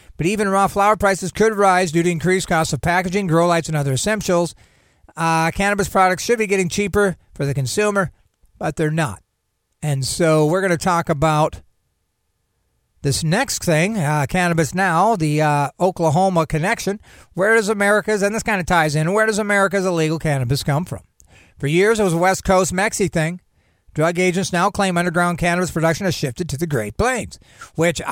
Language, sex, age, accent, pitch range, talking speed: English, male, 50-69, American, 155-195 Hz, 185 wpm